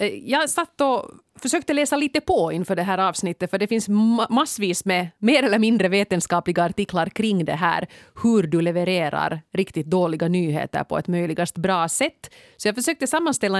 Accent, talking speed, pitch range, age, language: Finnish, 170 wpm, 170-220 Hz, 30-49, Swedish